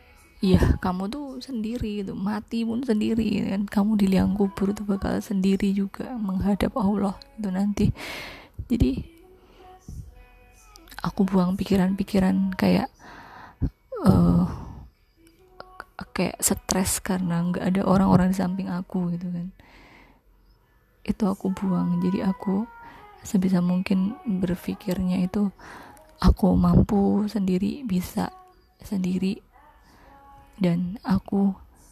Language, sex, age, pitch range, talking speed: Indonesian, female, 20-39, 175-210 Hz, 100 wpm